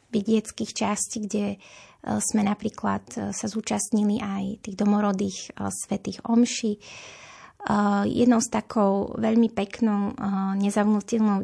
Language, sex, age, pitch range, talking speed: Slovak, female, 20-39, 205-230 Hz, 100 wpm